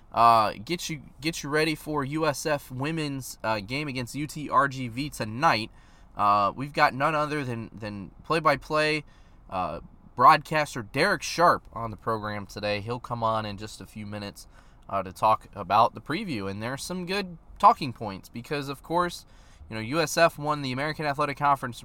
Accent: American